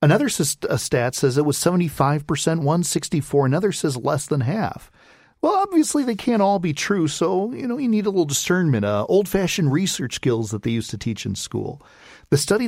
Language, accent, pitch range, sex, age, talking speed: English, American, 125-170 Hz, male, 40-59, 185 wpm